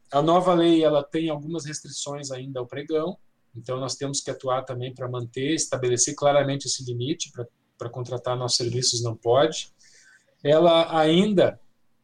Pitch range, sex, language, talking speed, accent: 130-170 Hz, male, Portuguese, 150 wpm, Brazilian